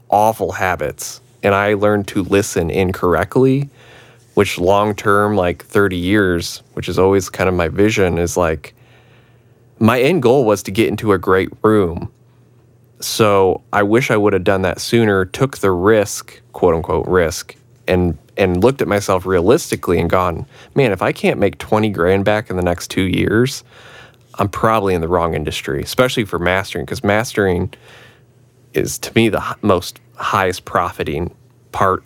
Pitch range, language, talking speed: 90-120 Hz, English, 160 wpm